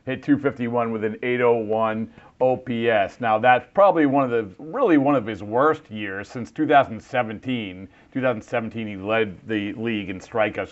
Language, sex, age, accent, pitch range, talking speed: English, male, 40-59, American, 110-130 Hz, 150 wpm